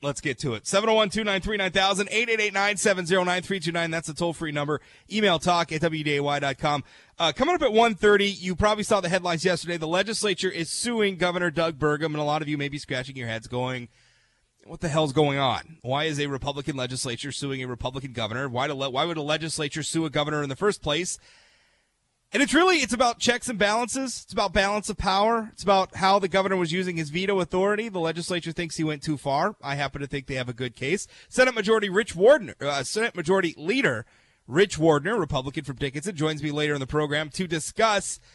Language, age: English, 30-49